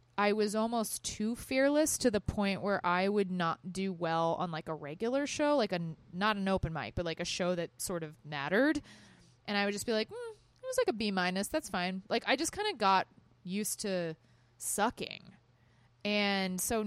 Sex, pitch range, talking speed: female, 175-215 Hz, 210 wpm